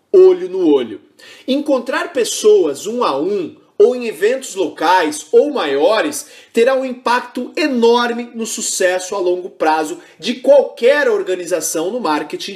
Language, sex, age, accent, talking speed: Portuguese, male, 30-49, Brazilian, 135 wpm